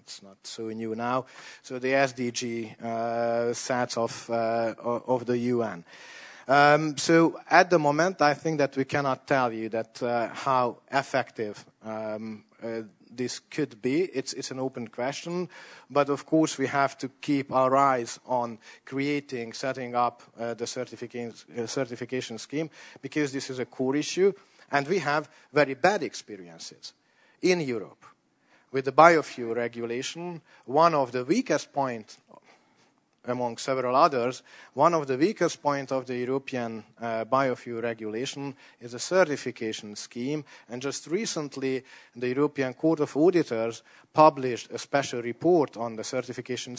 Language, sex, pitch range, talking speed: English, male, 115-145 Hz, 145 wpm